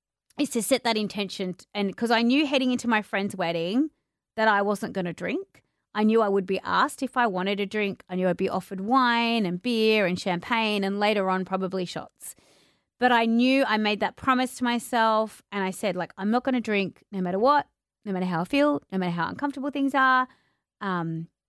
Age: 30-49